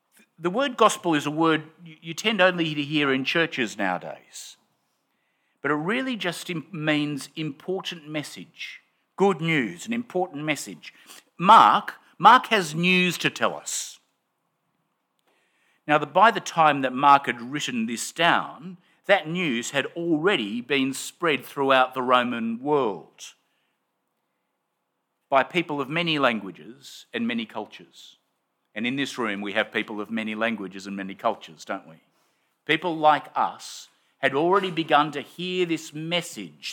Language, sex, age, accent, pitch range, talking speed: English, male, 50-69, Australian, 135-180 Hz, 140 wpm